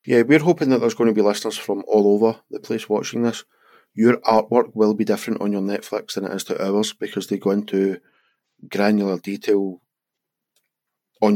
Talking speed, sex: 190 wpm, male